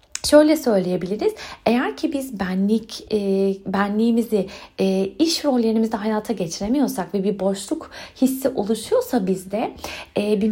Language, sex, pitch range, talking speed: Turkish, female, 200-290 Hz, 105 wpm